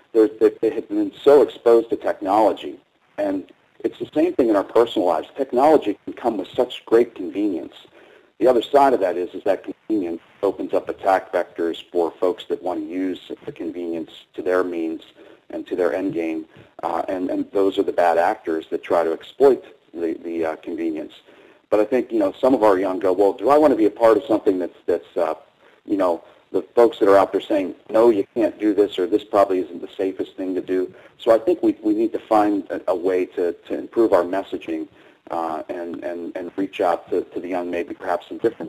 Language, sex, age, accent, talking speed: English, male, 40-59, American, 225 wpm